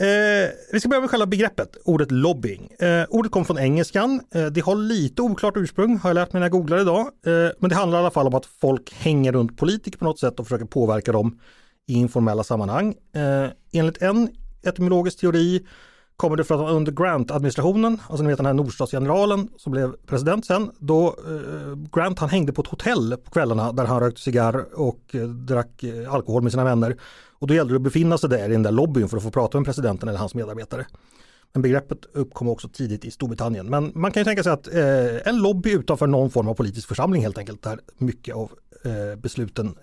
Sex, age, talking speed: male, 30-49, 215 wpm